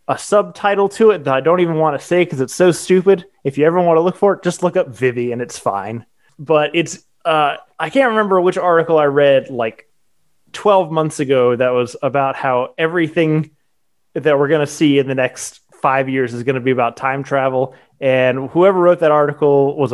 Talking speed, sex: 215 wpm, male